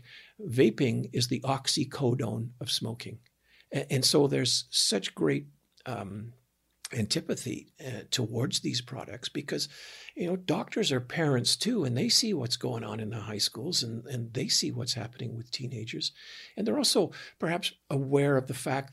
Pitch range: 115-135 Hz